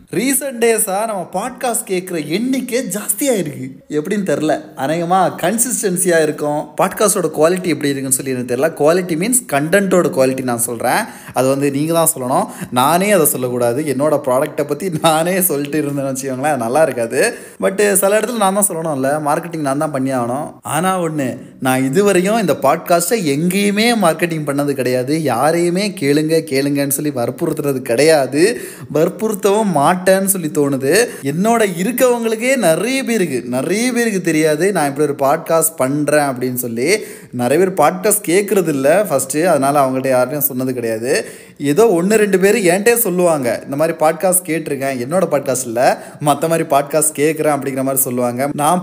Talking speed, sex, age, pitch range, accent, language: 135 wpm, male, 20-39, 135-185 Hz, native, Tamil